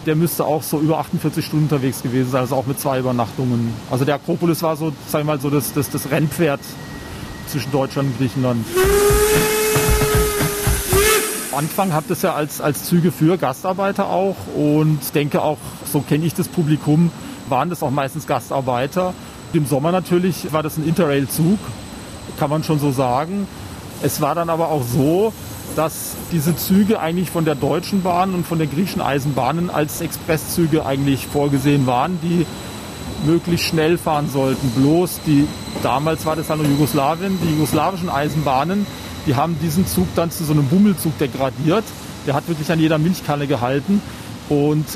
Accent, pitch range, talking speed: German, 140-170 Hz, 165 wpm